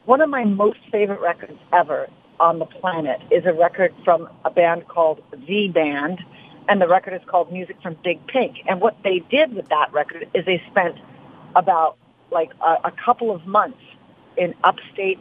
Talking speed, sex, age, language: 185 wpm, female, 50-69, English